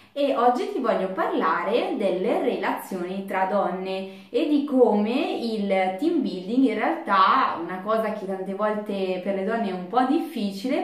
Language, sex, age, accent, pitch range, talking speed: Italian, female, 20-39, native, 190-220 Hz, 160 wpm